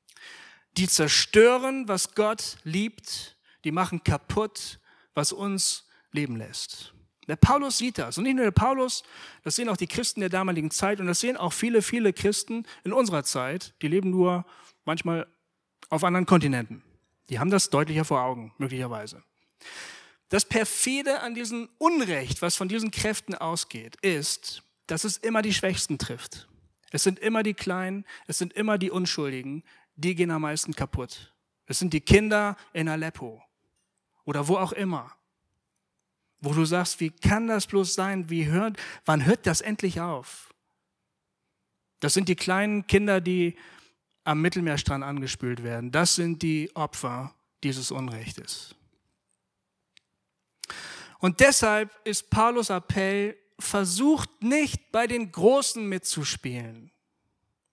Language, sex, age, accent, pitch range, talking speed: German, male, 40-59, German, 155-215 Hz, 140 wpm